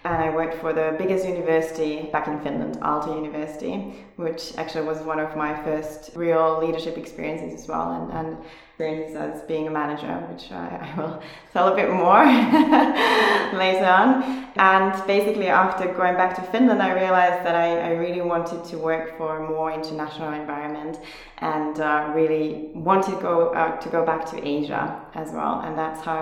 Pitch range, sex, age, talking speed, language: 150-170 Hz, female, 20-39, 180 wpm, English